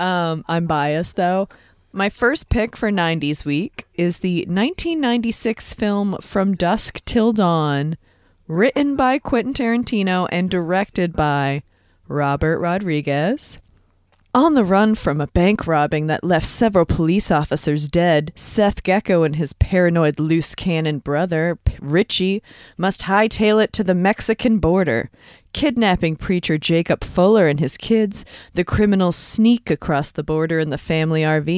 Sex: female